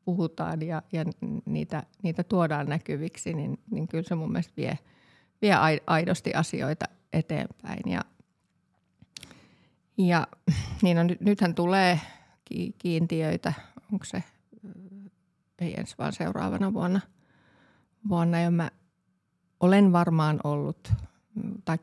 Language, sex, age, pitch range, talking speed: Finnish, female, 30-49, 165-205 Hz, 110 wpm